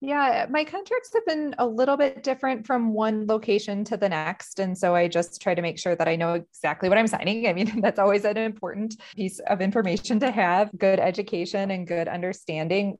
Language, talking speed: English, 210 wpm